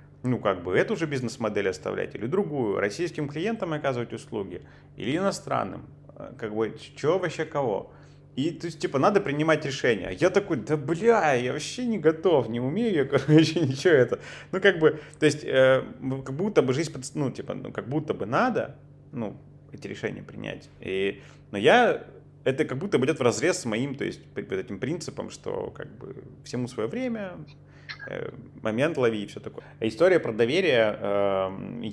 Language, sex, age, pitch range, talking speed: Russian, male, 30-49, 120-155 Hz, 175 wpm